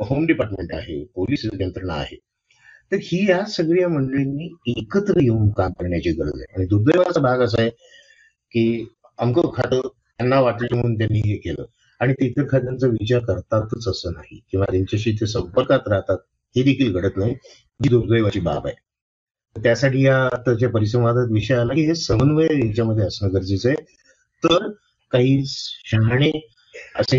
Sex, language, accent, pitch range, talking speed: male, Marathi, native, 105-140 Hz, 150 wpm